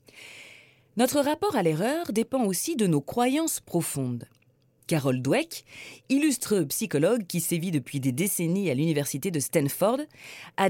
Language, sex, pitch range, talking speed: French, female, 135-225 Hz, 135 wpm